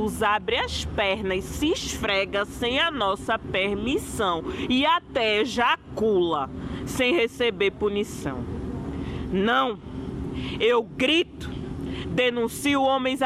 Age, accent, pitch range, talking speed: 20-39, Brazilian, 185-225 Hz, 95 wpm